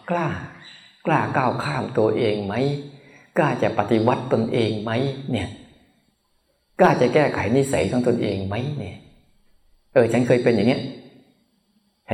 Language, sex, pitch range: Thai, male, 105-135 Hz